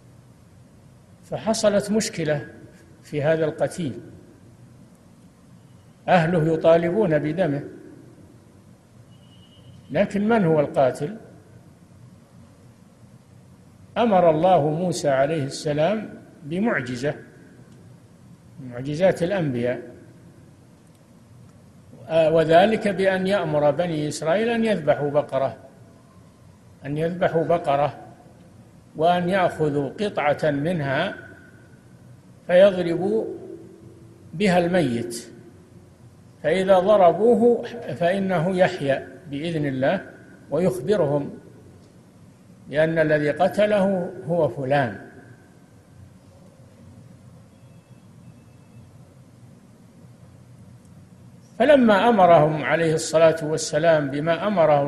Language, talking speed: Arabic, 60 wpm